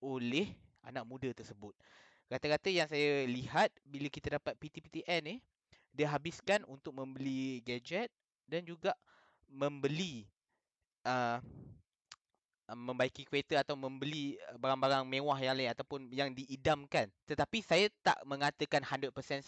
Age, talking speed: 20-39, 120 wpm